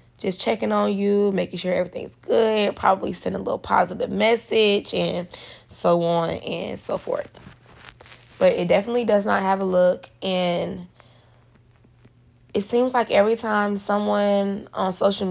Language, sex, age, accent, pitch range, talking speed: English, female, 20-39, American, 120-200 Hz, 145 wpm